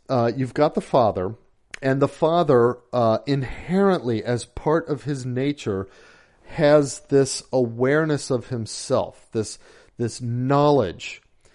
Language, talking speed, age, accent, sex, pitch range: English, 120 wpm, 40-59, American, male, 125-155 Hz